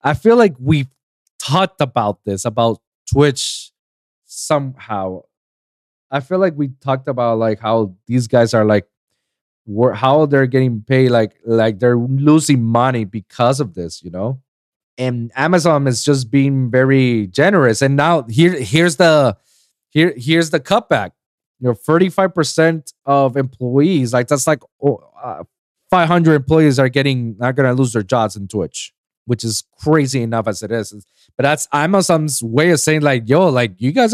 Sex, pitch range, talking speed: male, 125-160 Hz, 160 wpm